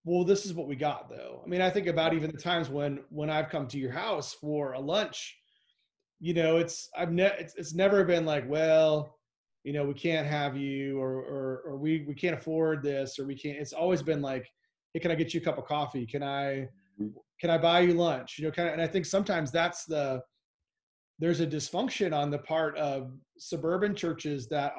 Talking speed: 225 wpm